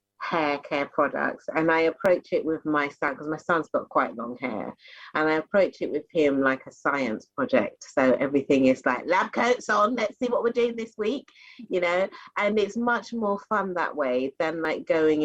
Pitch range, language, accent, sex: 140-195 Hz, English, British, female